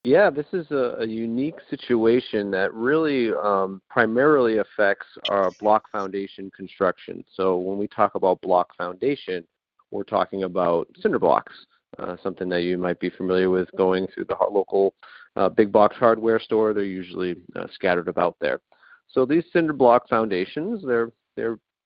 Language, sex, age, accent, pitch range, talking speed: English, male, 40-59, American, 100-125 Hz, 160 wpm